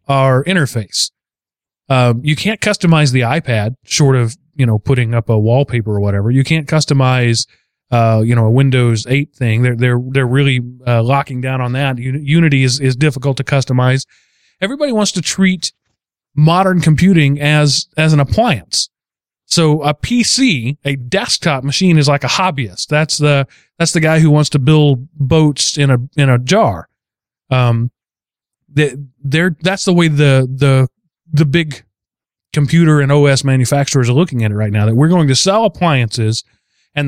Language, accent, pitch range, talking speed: English, American, 125-155 Hz, 170 wpm